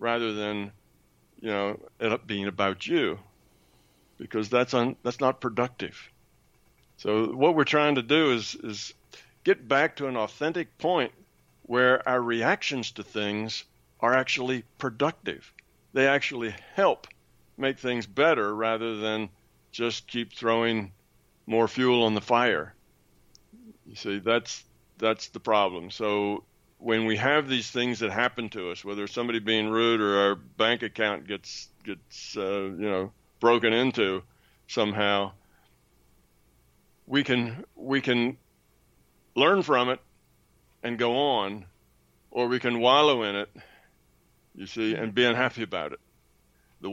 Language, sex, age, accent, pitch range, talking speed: English, male, 50-69, American, 100-125 Hz, 140 wpm